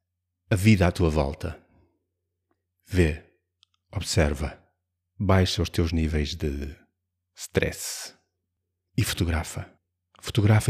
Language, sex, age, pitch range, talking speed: Portuguese, male, 30-49, 85-100 Hz, 90 wpm